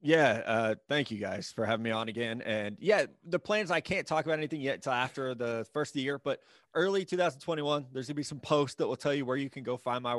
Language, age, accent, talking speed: English, 20-39, American, 265 wpm